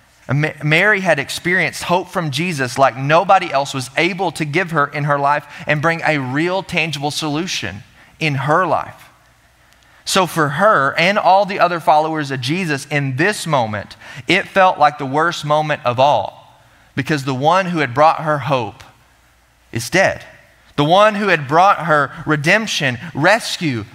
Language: English